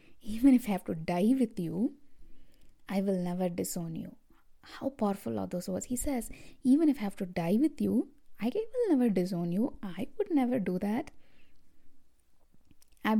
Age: 20-39